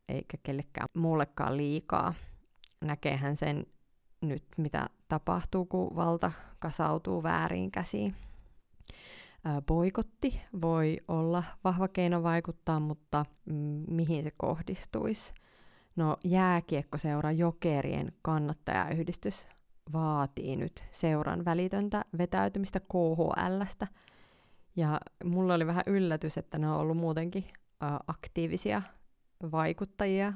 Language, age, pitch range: Finnish, 30-49, 150-185 Hz